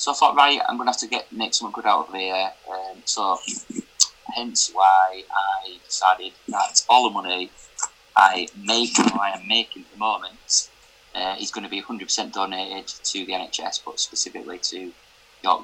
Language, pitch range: English, 95-120 Hz